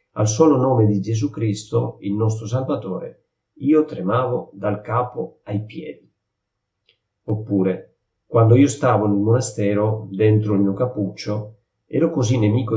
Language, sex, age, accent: Italian, male, 40-59, native